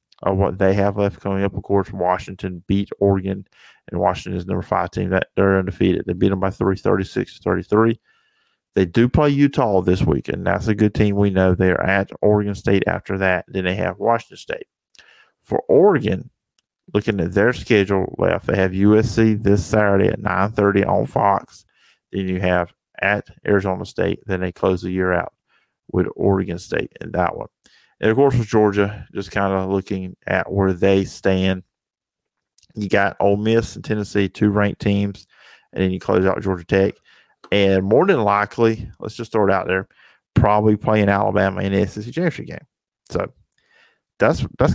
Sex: male